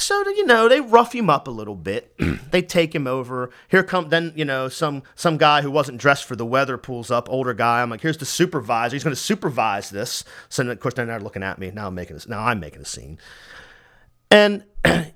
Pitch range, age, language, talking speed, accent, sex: 105-160 Hz, 40-59, English, 240 wpm, American, male